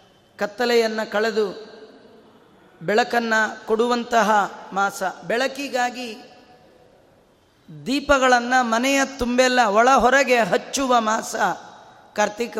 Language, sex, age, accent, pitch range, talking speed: Kannada, female, 30-49, native, 220-270 Hz, 65 wpm